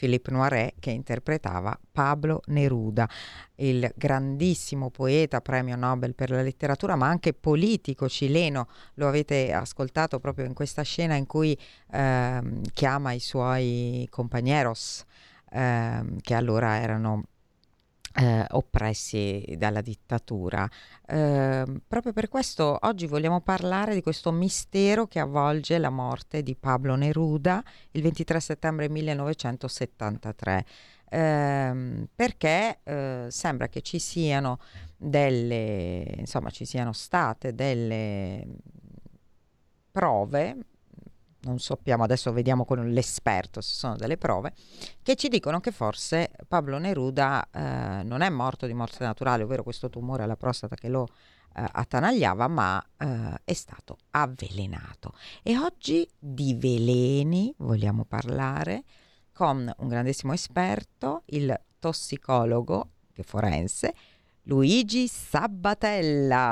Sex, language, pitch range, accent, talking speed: female, Italian, 115-155 Hz, native, 115 wpm